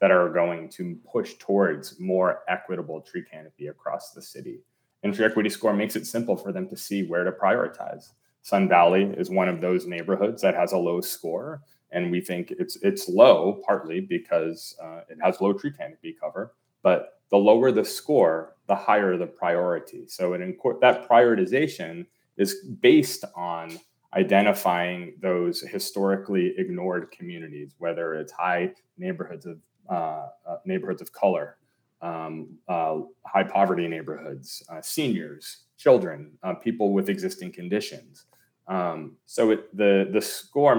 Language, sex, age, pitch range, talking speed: English, male, 30-49, 90-120 Hz, 150 wpm